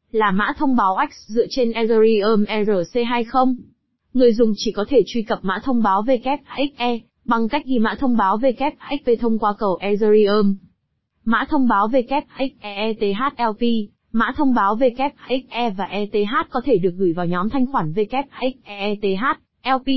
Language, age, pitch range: Vietnamese, 20-39, 210-260 Hz